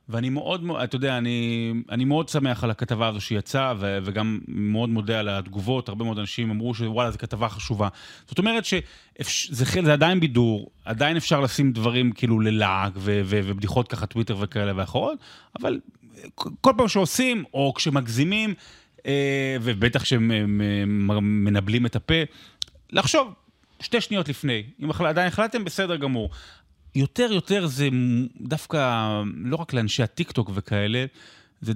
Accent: native